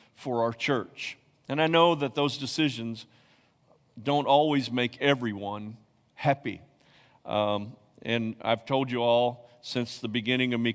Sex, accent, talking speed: male, American, 140 wpm